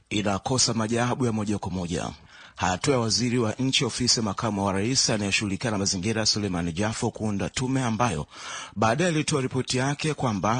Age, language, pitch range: 30-49, Swahili, 110-130 Hz